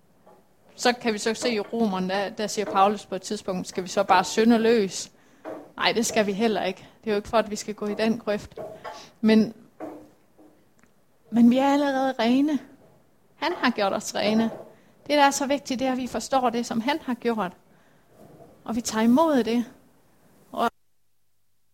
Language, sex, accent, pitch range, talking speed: Danish, female, native, 210-260 Hz, 190 wpm